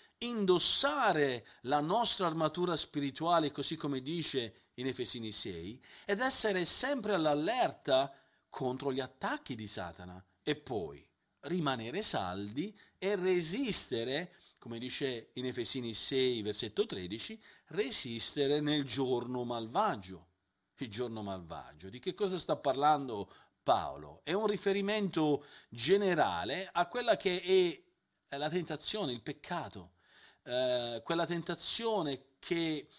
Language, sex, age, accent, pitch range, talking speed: Italian, male, 40-59, native, 125-180 Hz, 110 wpm